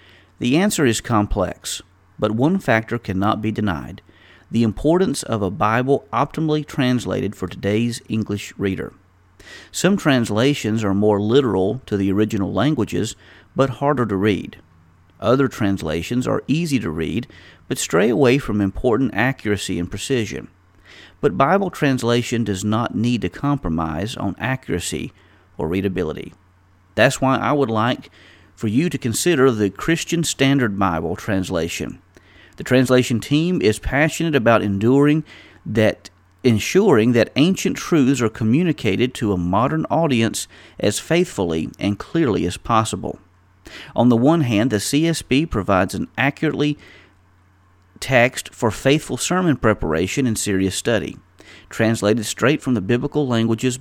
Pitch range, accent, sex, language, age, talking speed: 95-135 Hz, American, male, English, 40-59, 135 wpm